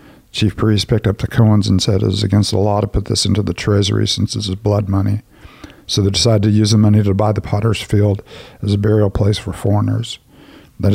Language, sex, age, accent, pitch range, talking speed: English, male, 50-69, American, 100-110 Hz, 235 wpm